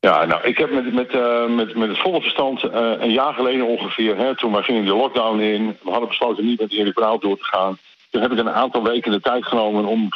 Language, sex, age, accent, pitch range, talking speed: Dutch, male, 50-69, Dutch, 100-120 Hz, 260 wpm